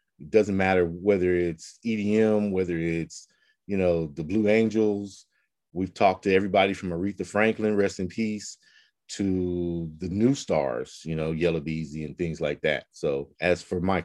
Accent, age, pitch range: American, 30-49, 80-95 Hz